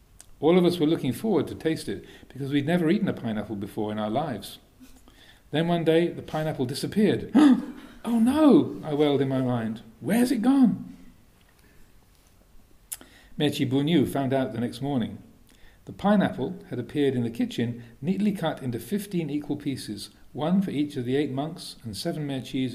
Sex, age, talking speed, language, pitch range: male, 50-69, 170 wpm, English, 125-165 Hz